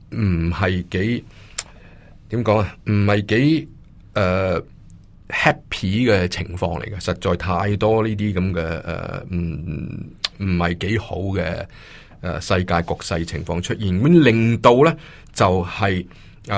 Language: Chinese